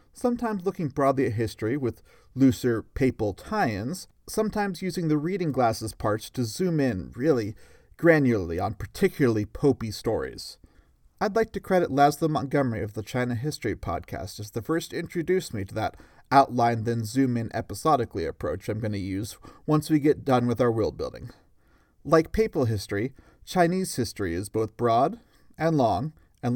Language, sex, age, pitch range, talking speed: English, male, 30-49, 110-160 Hz, 165 wpm